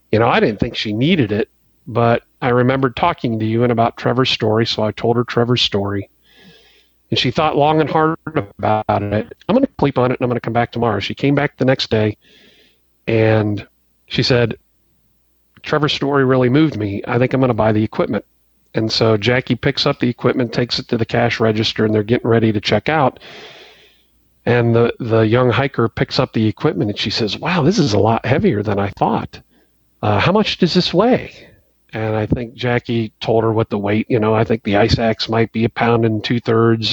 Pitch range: 110-130 Hz